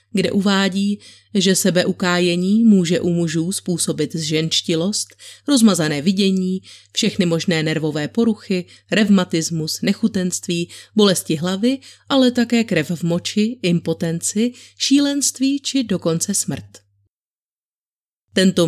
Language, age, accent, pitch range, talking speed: Czech, 30-49, native, 165-195 Hz, 95 wpm